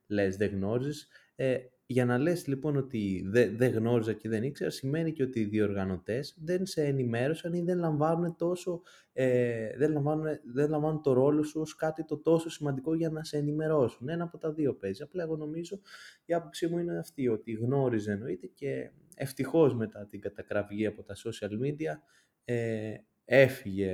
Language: Greek